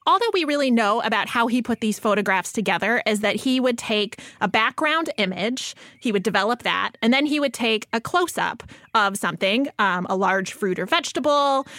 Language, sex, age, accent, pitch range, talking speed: English, female, 30-49, American, 205-260 Hz, 200 wpm